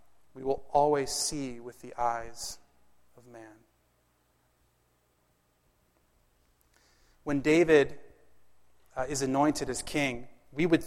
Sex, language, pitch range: male, English, 125-155 Hz